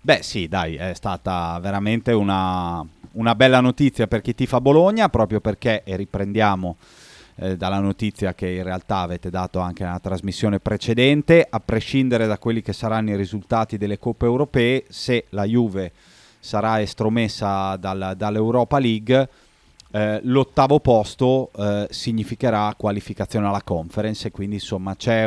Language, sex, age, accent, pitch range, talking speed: Italian, male, 30-49, native, 100-120 Hz, 140 wpm